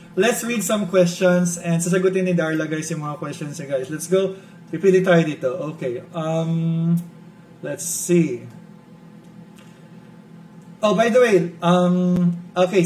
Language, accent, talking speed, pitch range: Filipino, native, 125 wpm, 160-185 Hz